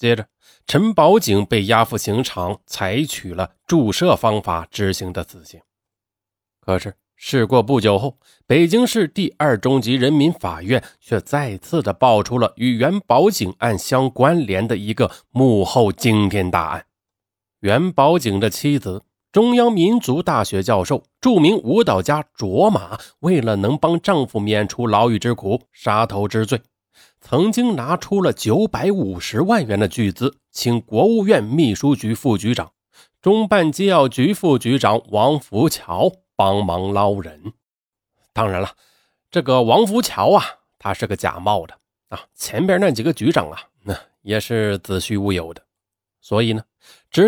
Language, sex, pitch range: Chinese, male, 95-140 Hz